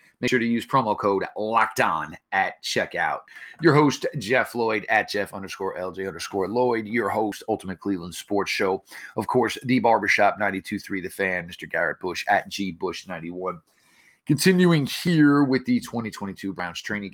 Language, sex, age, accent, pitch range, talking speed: English, male, 30-49, American, 95-115 Hz, 155 wpm